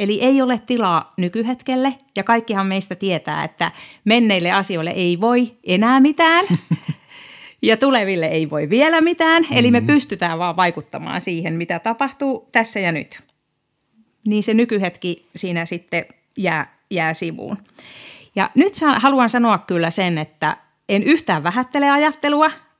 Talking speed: 135 wpm